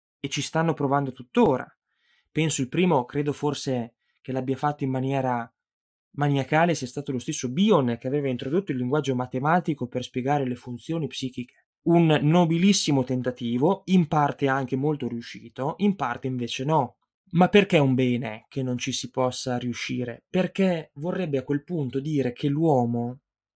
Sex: male